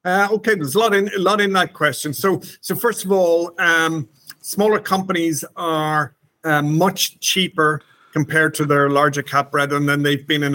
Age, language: 50-69, English